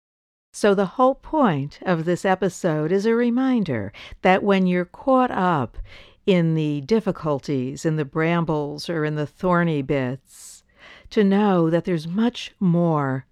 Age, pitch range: 60-79, 145-185 Hz